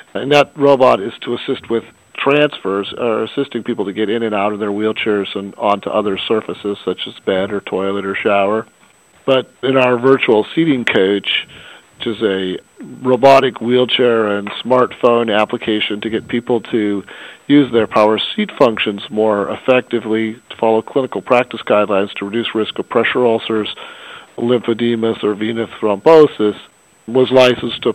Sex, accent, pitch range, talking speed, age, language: male, American, 105-125 Hz, 155 wpm, 50-69, English